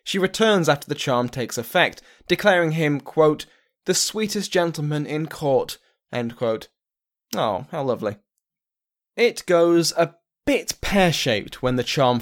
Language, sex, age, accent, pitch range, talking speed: English, male, 10-29, British, 115-170 Hz, 135 wpm